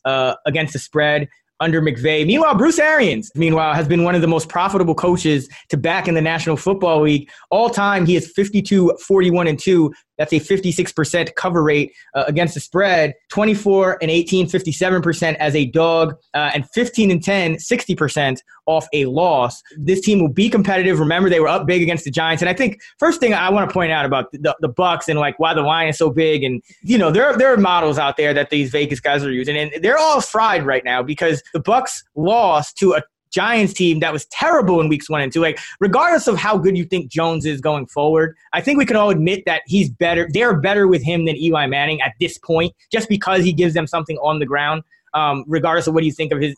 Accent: American